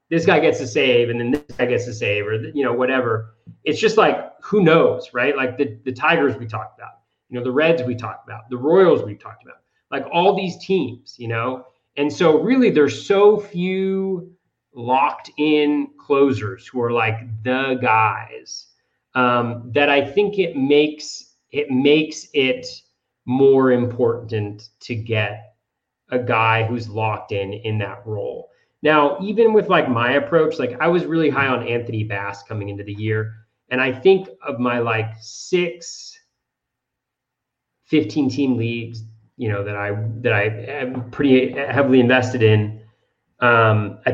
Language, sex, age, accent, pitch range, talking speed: English, male, 30-49, American, 115-150 Hz, 165 wpm